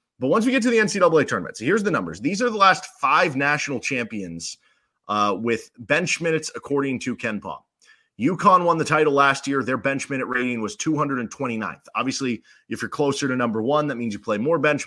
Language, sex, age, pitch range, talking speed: English, male, 30-49, 110-145 Hz, 210 wpm